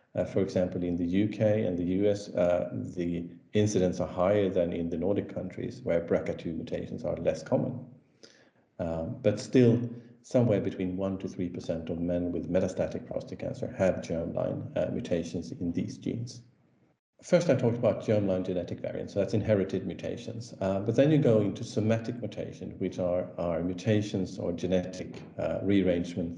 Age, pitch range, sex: 50-69, 90-110 Hz, male